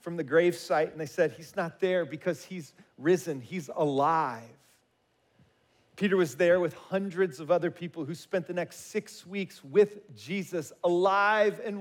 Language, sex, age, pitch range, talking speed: English, male, 40-59, 175-215 Hz, 170 wpm